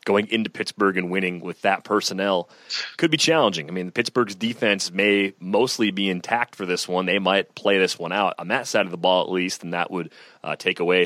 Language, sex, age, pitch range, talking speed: English, male, 30-49, 95-120 Hz, 235 wpm